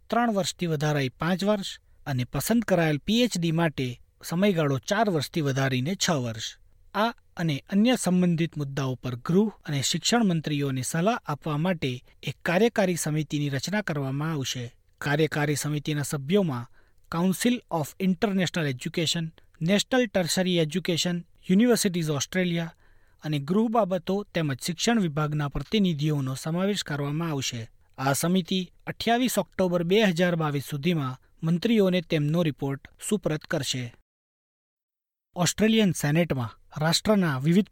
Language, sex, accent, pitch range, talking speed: Gujarati, male, native, 140-185 Hz, 120 wpm